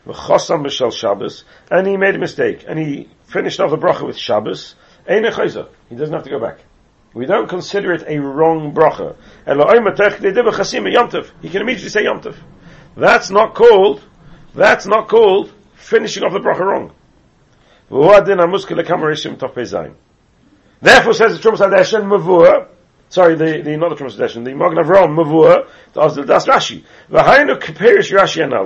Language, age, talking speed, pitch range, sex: English, 40-59, 130 wpm, 160-195 Hz, male